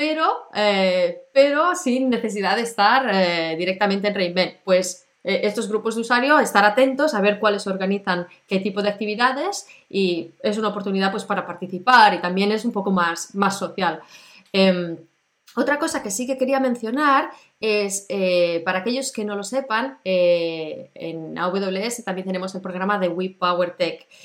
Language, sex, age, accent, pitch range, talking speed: Spanish, female, 20-39, Spanish, 180-230 Hz, 170 wpm